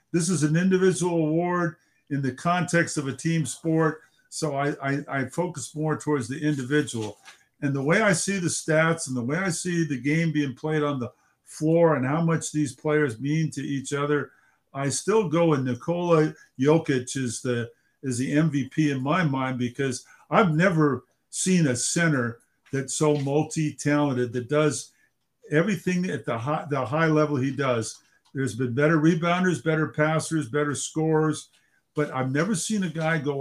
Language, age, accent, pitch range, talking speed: English, 50-69, American, 135-160 Hz, 175 wpm